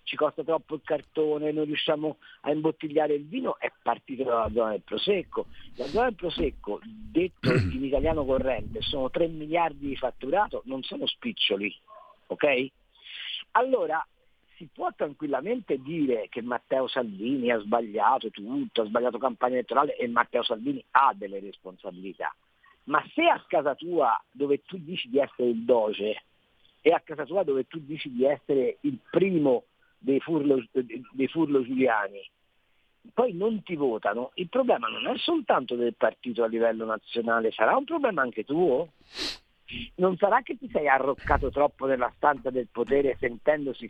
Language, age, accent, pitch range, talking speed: Italian, 50-69, native, 130-190 Hz, 155 wpm